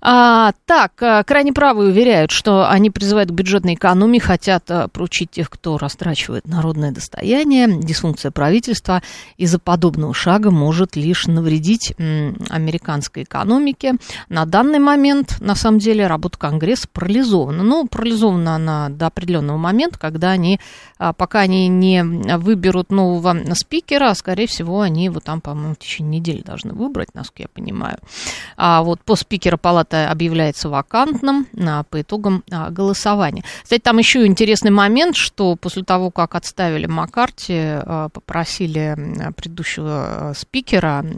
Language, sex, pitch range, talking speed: Russian, female, 160-210 Hz, 130 wpm